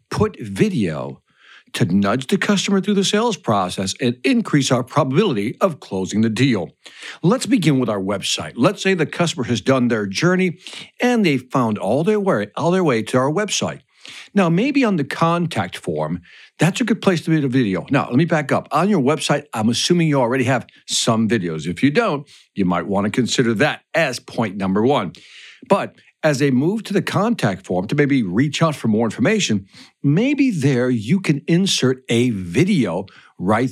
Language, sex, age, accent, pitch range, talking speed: English, male, 60-79, American, 120-190 Hz, 190 wpm